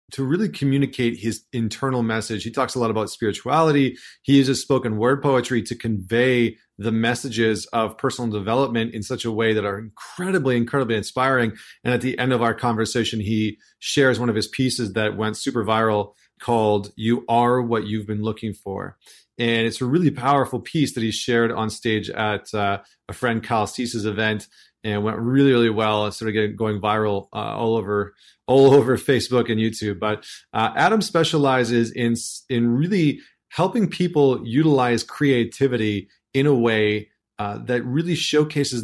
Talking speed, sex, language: 175 wpm, male, English